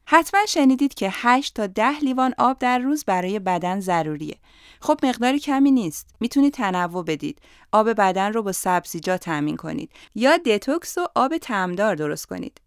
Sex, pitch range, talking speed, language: female, 175-255 Hz, 160 wpm, Persian